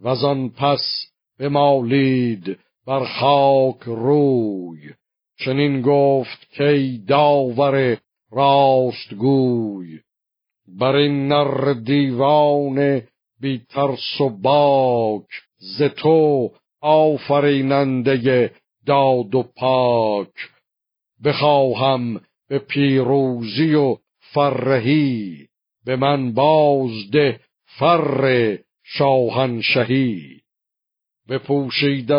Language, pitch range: Persian, 120-140 Hz